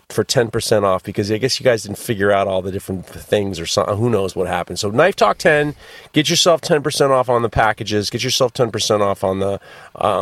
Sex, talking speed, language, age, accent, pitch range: male, 230 wpm, English, 40-59, American, 105-140 Hz